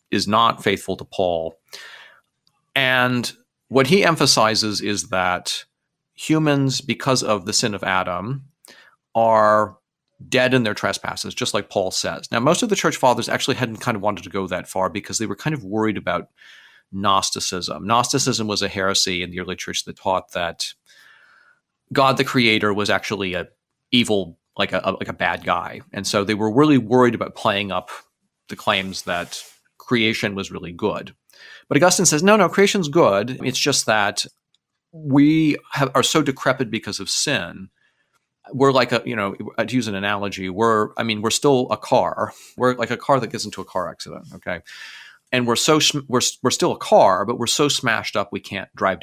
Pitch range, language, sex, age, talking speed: 100-135 Hz, English, male, 40-59, 185 wpm